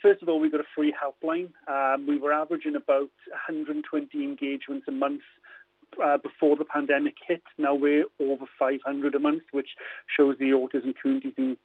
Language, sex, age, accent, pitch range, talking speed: English, male, 40-59, British, 135-155 Hz, 175 wpm